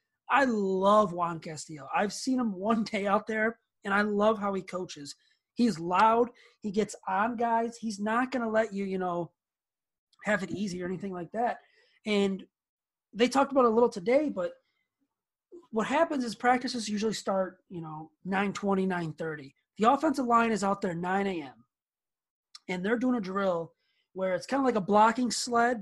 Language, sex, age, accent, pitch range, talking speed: English, male, 30-49, American, 185-230 Hz, 180 wpm